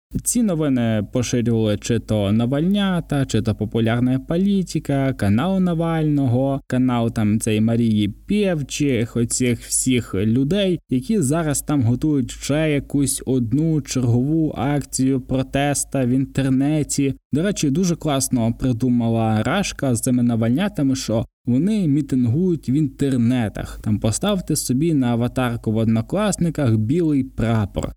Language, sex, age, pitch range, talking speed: Ukrainian, male, 20-39, 120-145 Hz, 120 wpm